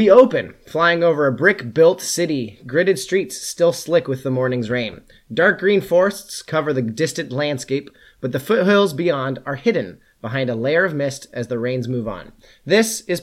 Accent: American